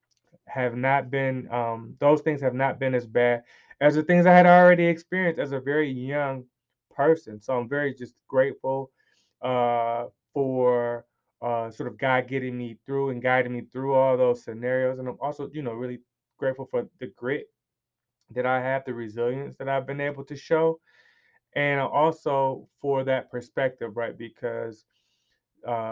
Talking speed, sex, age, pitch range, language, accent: 170 wpm, male, 20-39, 120-135 Hz, English, American